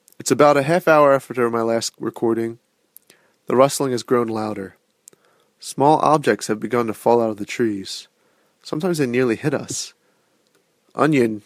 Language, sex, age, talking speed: English, male, 30-49, 155 wpm